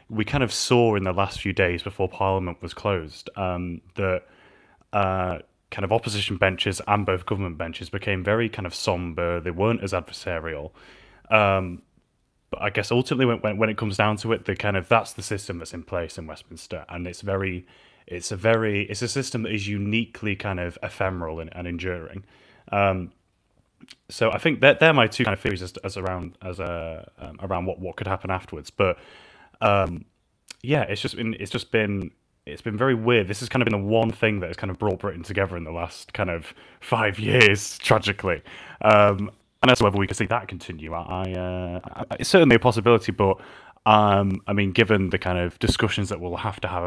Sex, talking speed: male, 205 wpm